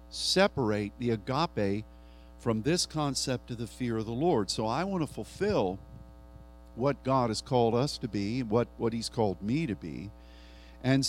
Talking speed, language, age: 175 wpm, English, 50-69